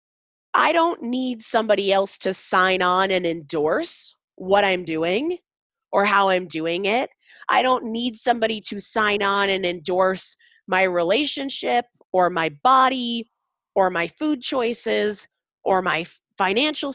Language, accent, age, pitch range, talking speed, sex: English, American, 30-49, 185-275 Hz, 140 wpm, female